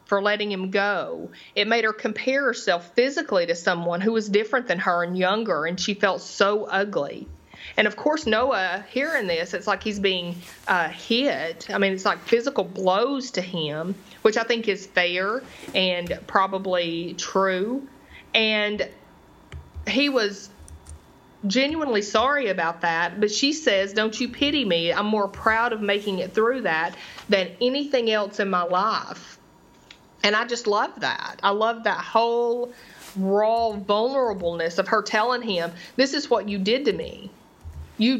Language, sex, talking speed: English, female, 160 wpm